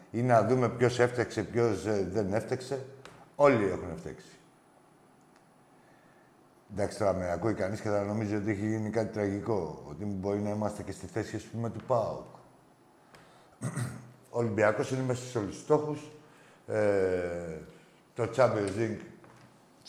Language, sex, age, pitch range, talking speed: Greek, male, 60-79, 105-130 Hz, 135 wpm